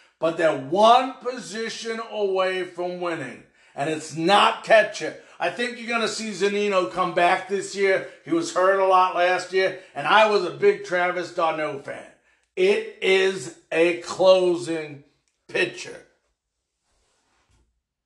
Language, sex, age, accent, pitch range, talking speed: English, male, 50-69, American, 170-220 Hz, 140 wpm